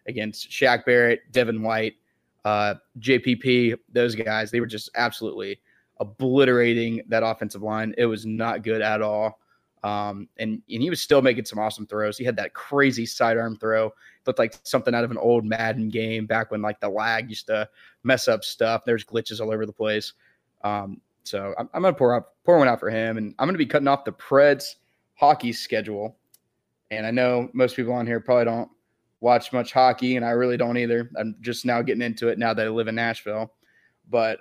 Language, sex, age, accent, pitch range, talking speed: English, male, 20-39, American, 110-130 Hz, 205 wpm